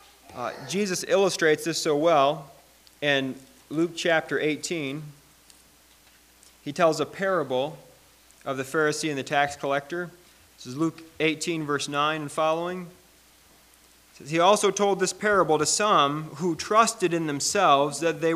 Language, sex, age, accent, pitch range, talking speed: English, male, 30-49, American, 145-185 Hz, 140 wpm